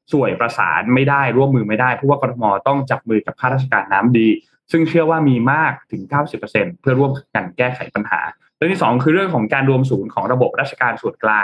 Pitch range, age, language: 115-145 Hz, 20-39, Thai